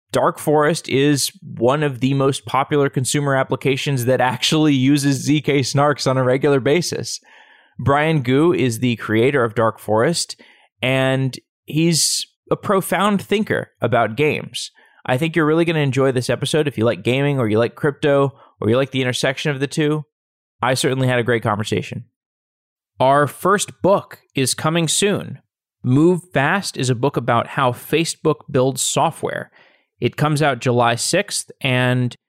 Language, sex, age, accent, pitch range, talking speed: English, male, 20-39, American, 125-155 Hz, 160 wpm